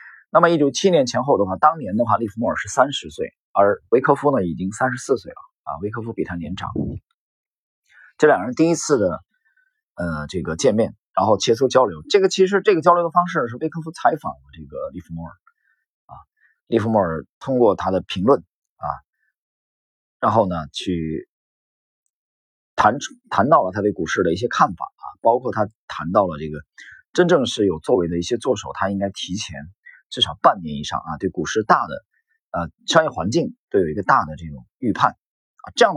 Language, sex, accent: Chinese, male, native